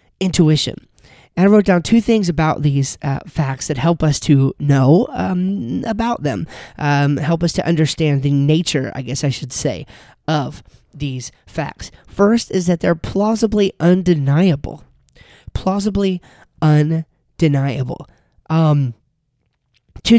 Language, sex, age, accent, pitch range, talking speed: English, male, 30-49, American, 145-185 Hz, 130 wpm